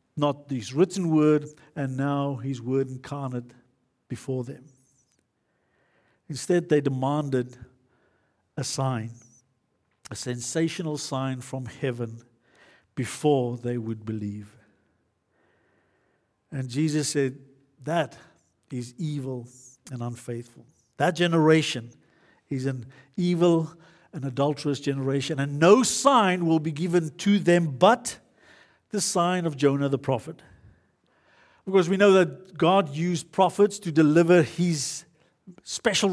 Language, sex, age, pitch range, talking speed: English, male, 50-69, 130-180 Hz, 110 wpm